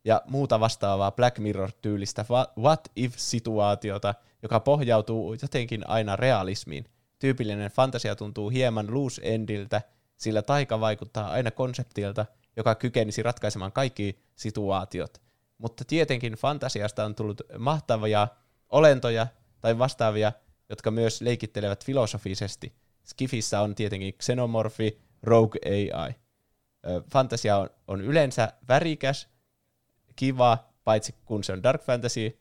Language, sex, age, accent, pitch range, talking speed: Finnish, male, 20-39, native, 105-125 Hz, 105 wpm